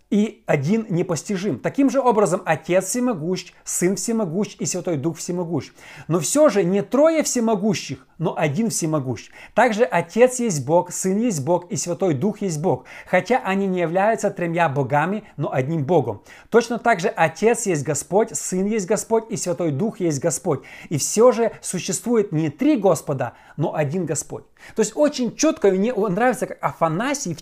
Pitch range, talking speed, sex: 150-210 Hz, 170 wpm, male